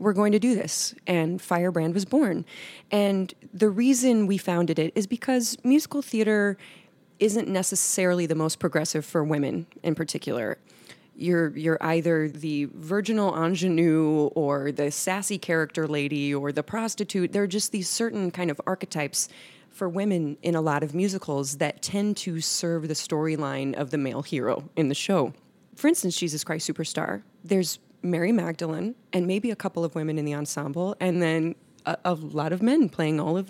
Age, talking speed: 30-49, 175 wpm